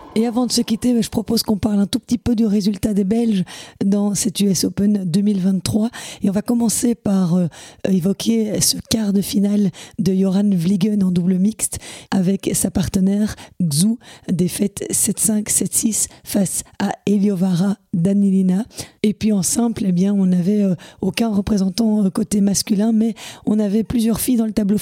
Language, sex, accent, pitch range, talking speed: French, female, French, 190-220 Hz, 165 wpm